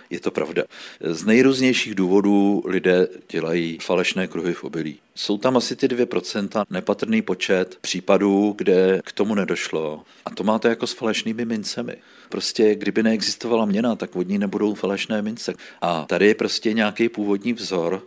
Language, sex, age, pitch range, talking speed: Czech, male, 50-69, 90-105 Hz, 155 wpm